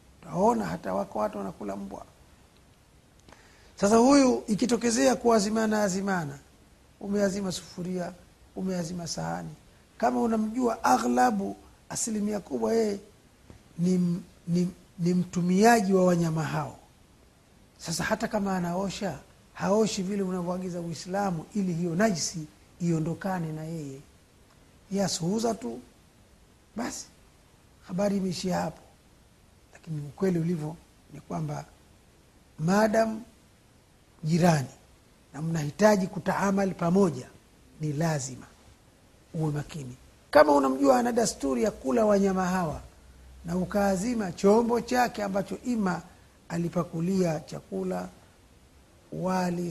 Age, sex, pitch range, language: 50-69, male, 150-205 Hz, Swahili